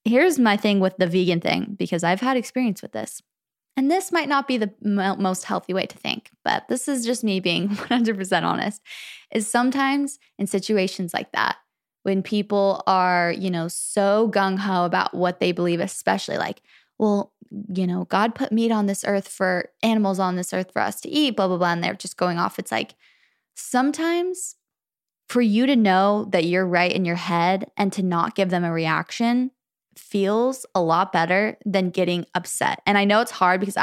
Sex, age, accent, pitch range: female, 20-39, American, 180-220 Hz